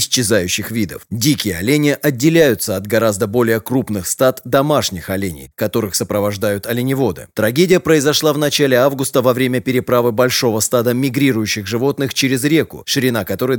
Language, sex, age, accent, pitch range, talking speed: Russian, male, 30-49, native, 110-140 Hz, 135 wpm